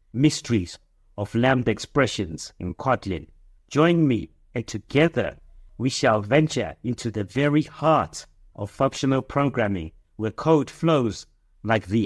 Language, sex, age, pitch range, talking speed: English, male, 60-79, 105-145 Hz, 125 wpm